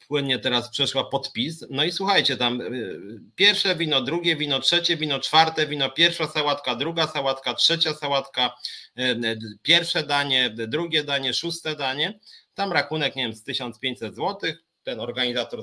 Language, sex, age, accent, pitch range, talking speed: Polish, male, 30-49, native, 135-170 Hz, 140 wpm